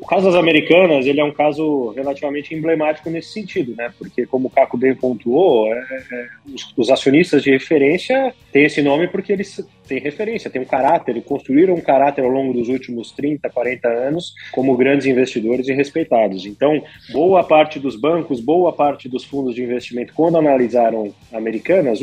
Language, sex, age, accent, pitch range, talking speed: Portuguese, male, 30-49, Brazilian, 125-155 Hz, 175 wpm